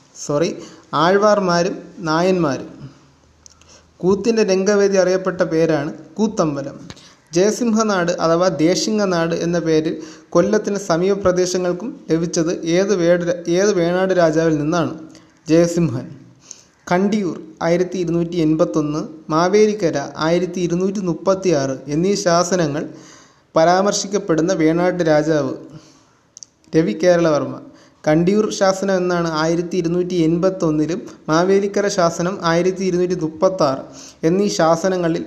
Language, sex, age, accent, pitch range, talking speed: Malayalam, male, 30-49, native, 160-190 Hz, 85 wpm